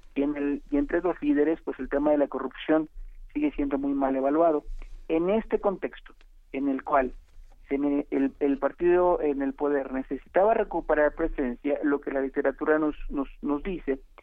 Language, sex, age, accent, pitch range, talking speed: Spanish, male, 50-69, Mexican, 135-160 Hz, 155 wpm